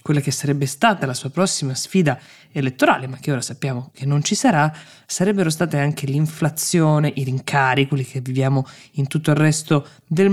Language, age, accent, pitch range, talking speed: Italian, 20-39, native, 135-160 Hz, 180 wpm